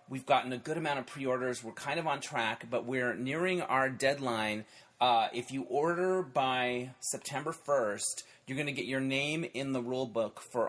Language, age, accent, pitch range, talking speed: English, 30-49, American, 115-145 Hz, 195 wpm